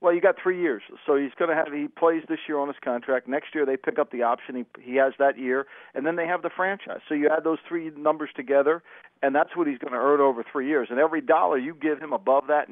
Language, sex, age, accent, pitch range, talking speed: English, male, 50-69, American, 135-165 Hz, 285 wpm